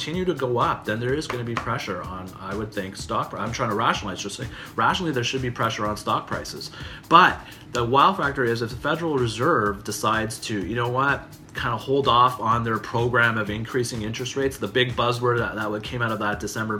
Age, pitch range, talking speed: 30-49, 105-125 Hz, 235 wpm